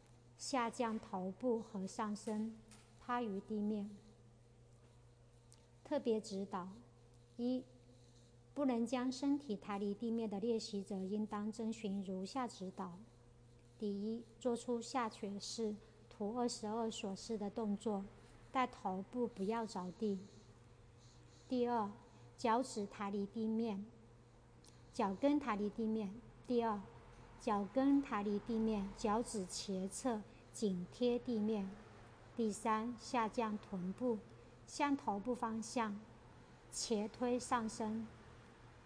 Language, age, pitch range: Chinese, 50-69, 185-230 Hz